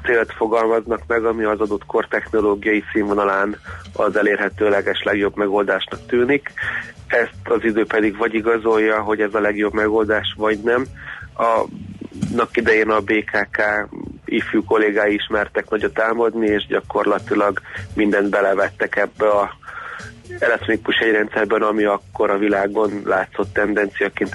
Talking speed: 130 wpm